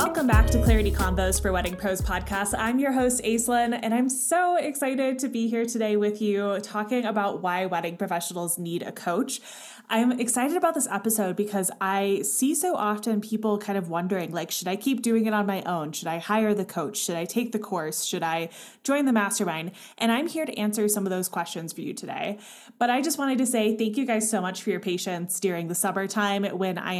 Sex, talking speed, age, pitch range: female, 220 wpm, 20-39, 185-230 Hz